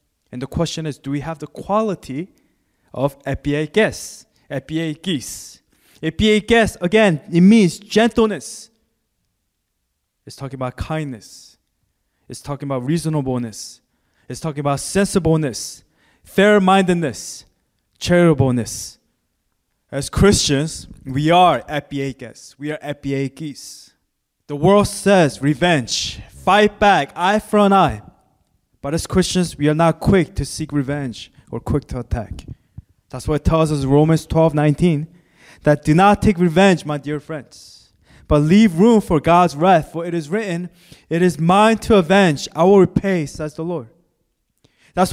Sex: male